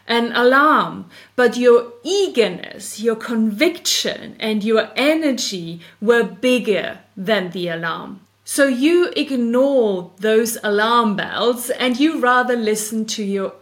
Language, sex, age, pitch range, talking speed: English, female, 30-49, 210-265 Hz, 120 wpm